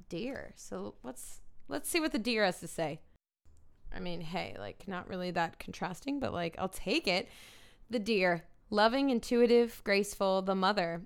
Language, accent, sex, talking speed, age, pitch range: English, American, female, 170 wpm, 20-39, 180-230 Hz